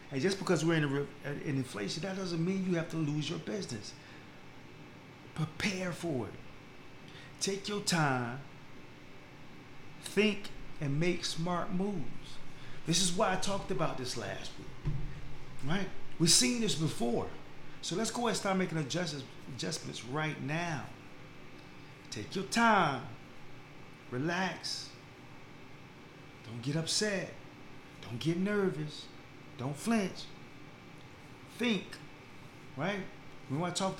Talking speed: 125 wpm